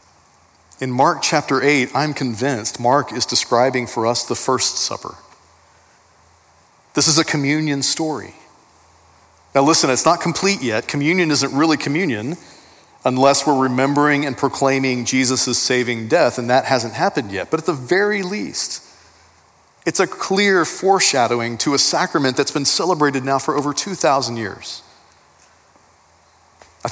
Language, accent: English, American